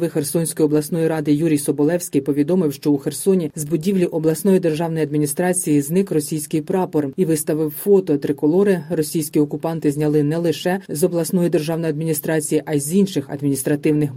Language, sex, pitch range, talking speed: Ukrainian, female, 150-190 Hz, 150 wpm